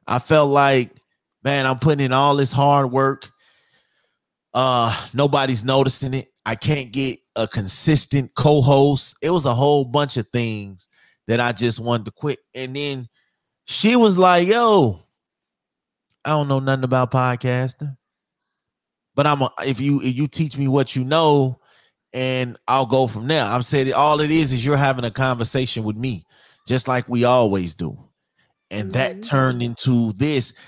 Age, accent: 30-49, American